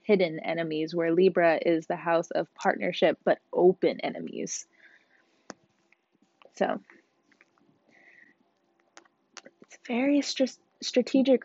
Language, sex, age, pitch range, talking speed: English, female, 20-39, 200-245 Hz, 85 wpm